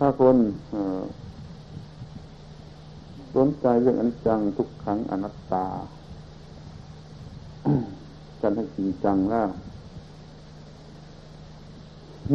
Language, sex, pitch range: Thai, male, 95-120 Hz